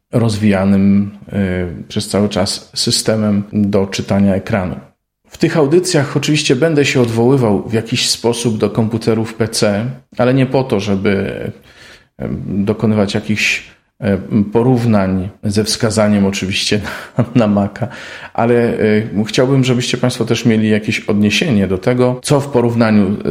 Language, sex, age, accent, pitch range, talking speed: Polish, male, 40-59, native, 100-120 Hz, 120 wpm